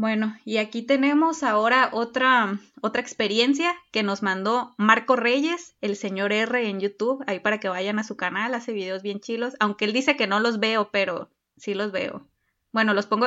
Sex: female